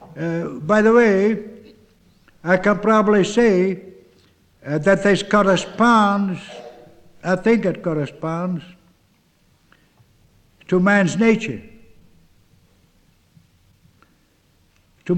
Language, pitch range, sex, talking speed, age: English, 145-220 Hz, male, 80 wpm, 60-79